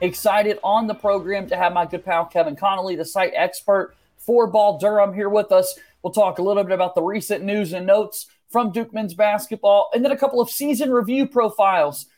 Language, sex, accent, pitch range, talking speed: English, male, American, 185-225 Hz, 210 wpm